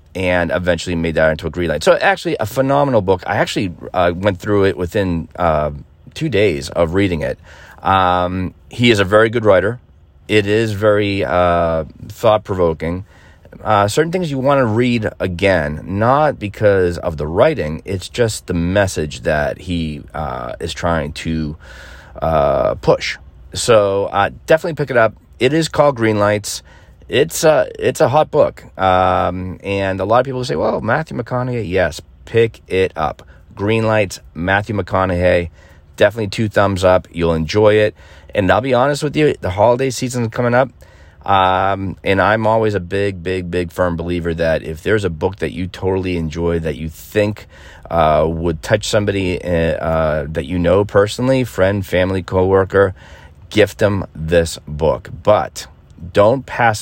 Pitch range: 85-110 Hz